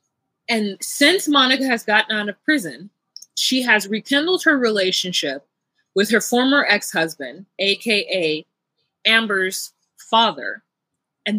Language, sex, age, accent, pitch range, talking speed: English, female, 20-39, American, 175-240 Hz, 110 wpm